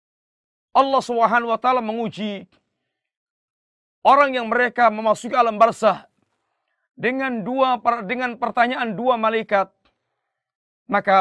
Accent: native